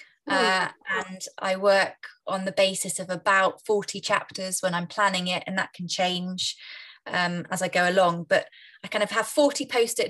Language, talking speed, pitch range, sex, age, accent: English, 185 wpm, 185-220 Hz, female, 20-39, British